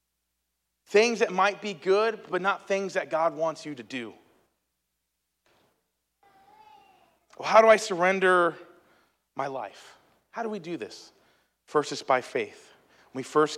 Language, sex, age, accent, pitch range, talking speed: English, male, 30-49, American, 120-180 Hz, 145 wpm